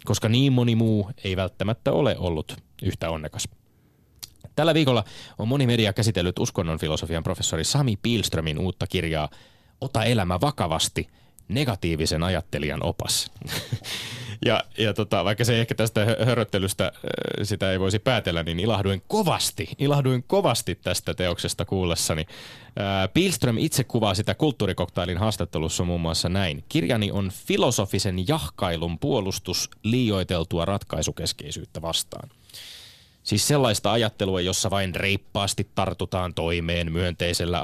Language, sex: Finnish, male